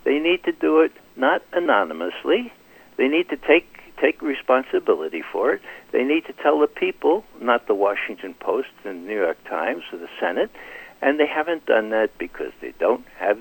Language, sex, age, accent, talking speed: English, male, 60-79, American, 190 wpm